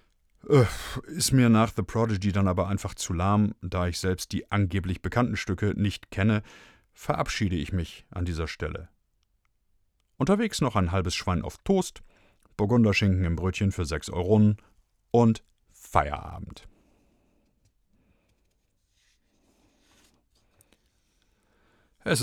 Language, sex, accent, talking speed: German, male, German, 110 wpm